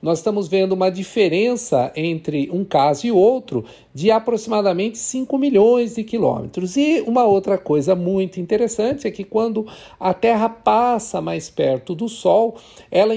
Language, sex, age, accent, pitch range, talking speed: Portuguese, male, 50-69, Brazilian, 180-225 Hz, 150 wpm